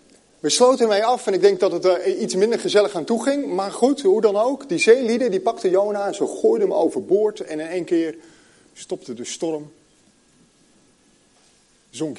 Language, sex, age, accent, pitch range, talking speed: Dutch, male, 40-59, Dutch, 140-200 Hz, 190 wpm